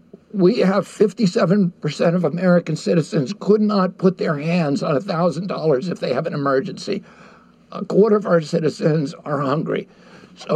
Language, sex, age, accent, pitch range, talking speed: English, male, 60-79, American, 175-210 Hz, 170 wpm